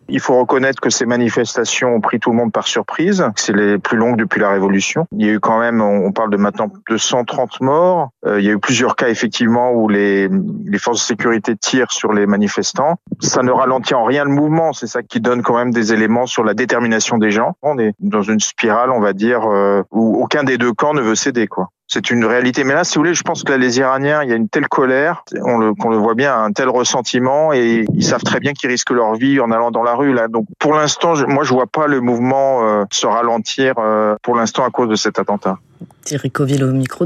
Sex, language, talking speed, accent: male, French, 255 wpm, French